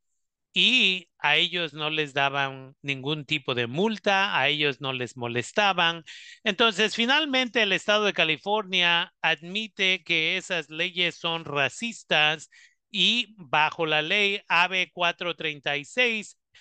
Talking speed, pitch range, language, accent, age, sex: 120 wpm, 140-185 Hz, Spanish, Mexican, 40-59, male